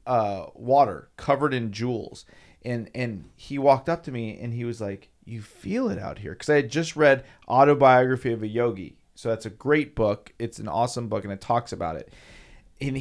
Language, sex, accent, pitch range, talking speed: English, male, American, 100-120 Hz, 210 wpm